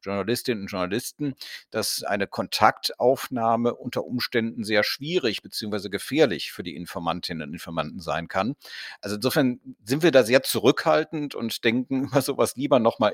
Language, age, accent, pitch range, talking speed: German, 50-69, German, 105-140 Hz, 140 wpm